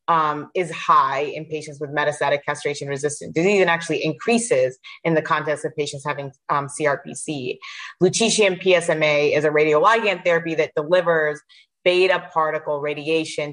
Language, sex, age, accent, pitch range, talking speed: English, female, 30-49, American, 150-170 Hz, 140 wpm